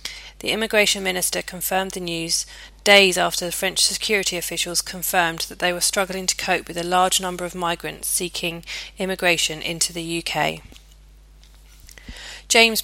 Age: 30-49